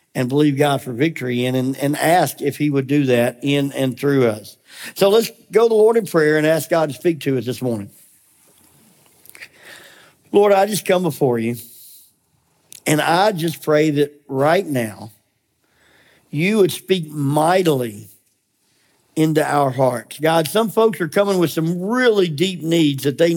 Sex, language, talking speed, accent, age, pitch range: male, English, 170 wpm, American, 50-69, 140-185 Hz